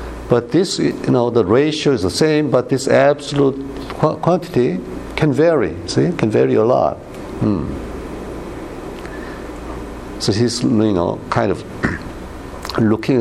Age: 60-79